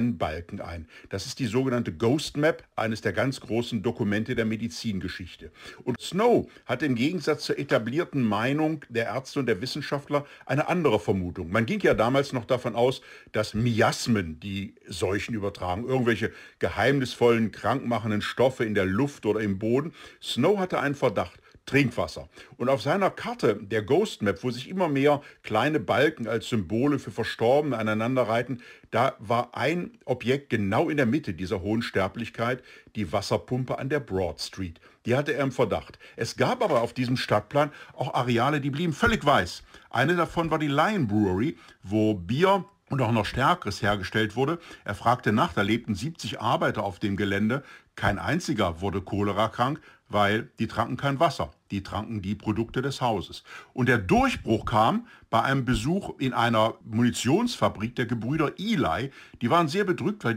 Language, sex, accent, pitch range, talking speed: German, male, German, 105-140 Hz, 170 wpm